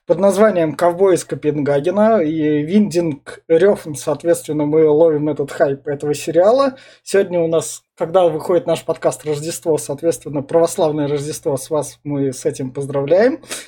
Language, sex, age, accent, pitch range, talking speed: Russian, male, 20-39, native, 150-185 Hz, 140 wpm